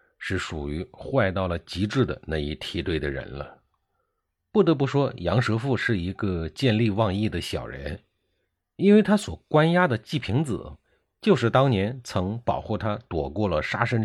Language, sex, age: Chinese, male, 50-69